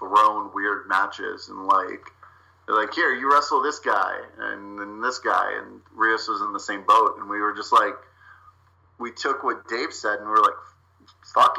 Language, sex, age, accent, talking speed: English, male, 30-49, American, 195 wpm